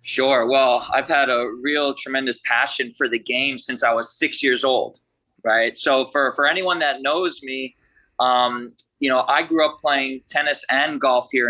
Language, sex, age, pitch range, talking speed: English, male, 20-39, 125-140 Hz, 190 wpm